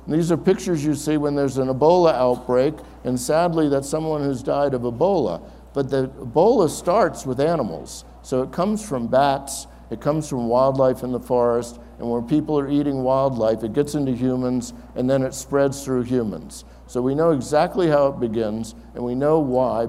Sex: male